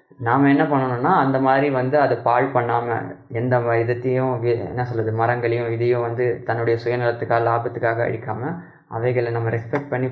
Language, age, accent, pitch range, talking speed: Tamil, 20-39, native, 120-140 Hz, 140 wpm